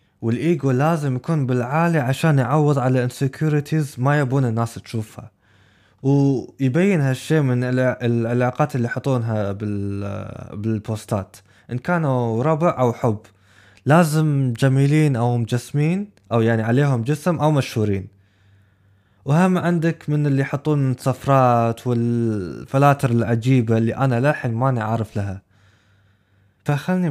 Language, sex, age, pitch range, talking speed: Arabic, male, 20-39, 110-145 Hz, 110 wpm